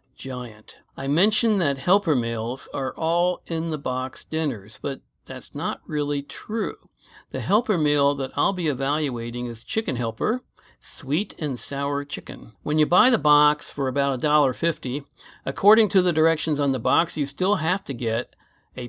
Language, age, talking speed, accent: English, 60-79, 170 wpm, American